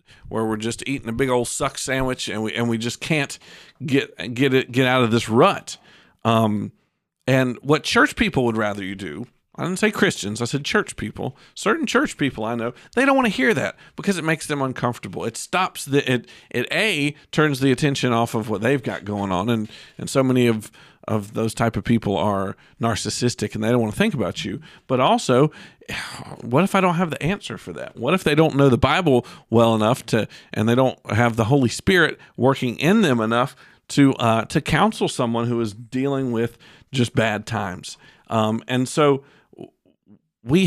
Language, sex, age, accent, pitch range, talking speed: English, male, 50-69, American, 115-160 Hz, 205 wpm